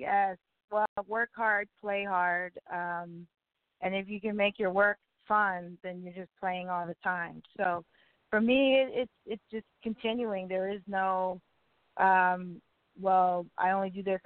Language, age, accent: English, 20-39, American